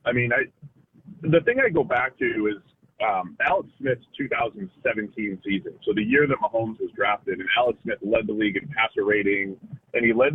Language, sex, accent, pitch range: English, male, American, 115-170 Hz